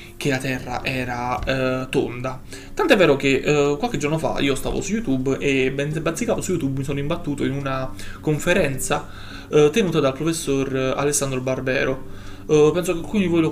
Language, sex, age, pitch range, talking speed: Italian, male, 20-39, 130-150 Hz, 180 wpm